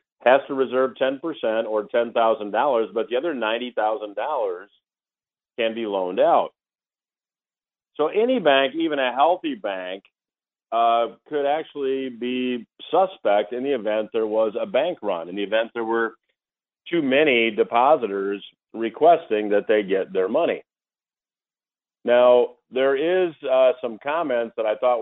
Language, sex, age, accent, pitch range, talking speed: English, male, 50-69, American, 110-150 Hz, 135 wpm